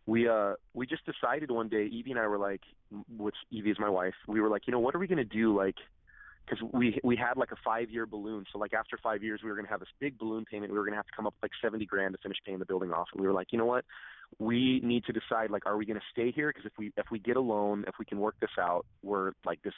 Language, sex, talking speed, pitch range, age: English, male, 315 wpm, 105-120 Hz, 30-49